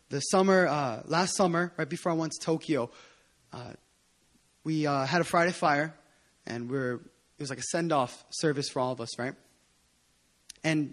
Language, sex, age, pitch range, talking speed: English, male, 20-39, 145-200 Hz, 185 wpm